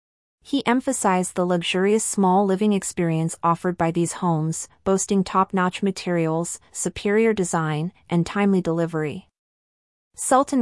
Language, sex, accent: English, female, American